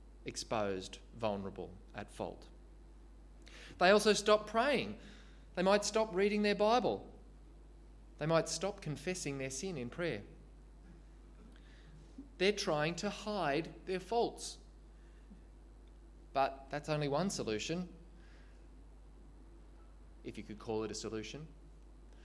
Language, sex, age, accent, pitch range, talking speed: English, male, 20-39, Australian, 115-170 Hz, 110 wpm